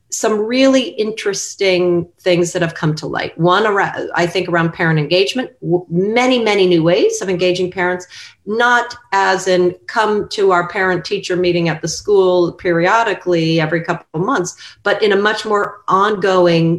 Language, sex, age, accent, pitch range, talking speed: English, female, 40-59, American, 160-195 Hz, 160 wpm